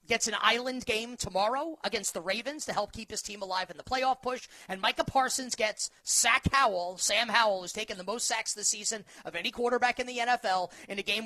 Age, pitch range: 30-49, 205-255 Hz